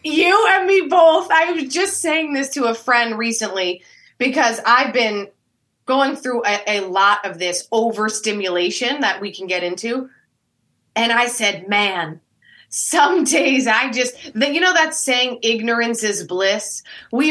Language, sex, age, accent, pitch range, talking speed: English, female, 20-39, American, 200-265 Hz, 155 wpm